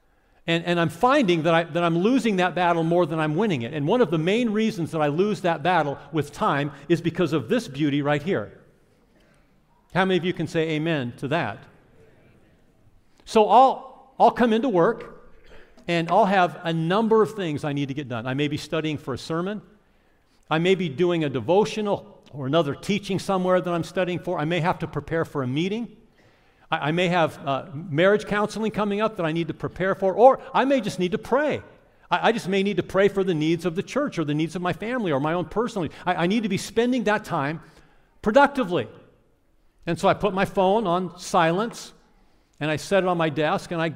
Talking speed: 220 wpm